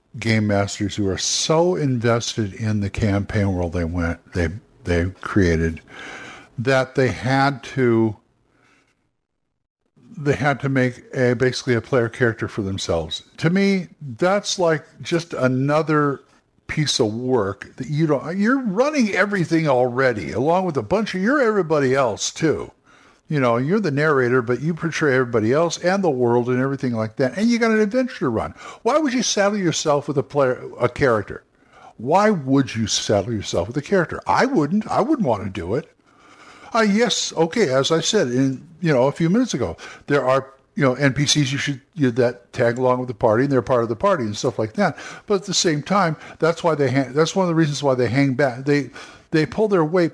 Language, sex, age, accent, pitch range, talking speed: English, male, 60-79, American, 120-170 Hz, 200 wpm